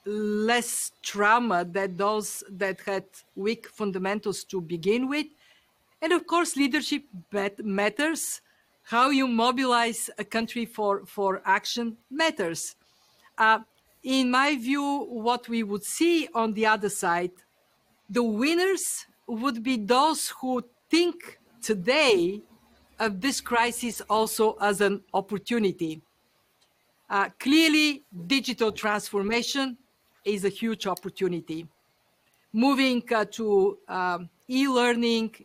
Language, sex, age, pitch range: Korean, female, 50-69, 205-265 Hz